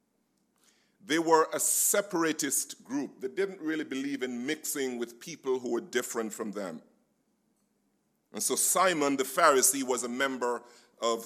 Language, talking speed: English, 145 wpm